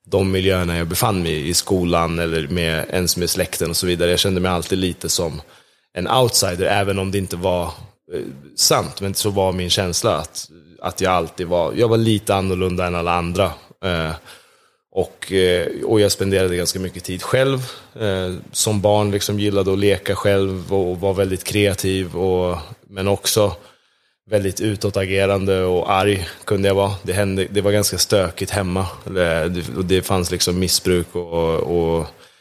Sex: male